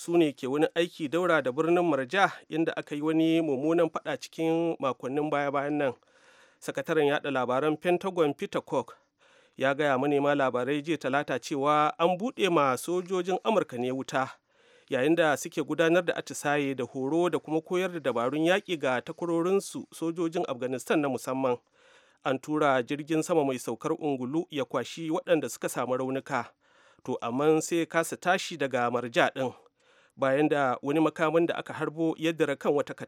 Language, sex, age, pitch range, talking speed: English, male, 40-59, 140-175 Hz, 160 wpm